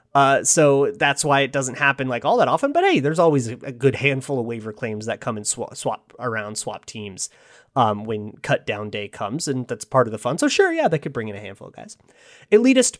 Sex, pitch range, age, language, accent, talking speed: male, 125-170 Hz, 30-49, English, American, 250 wpm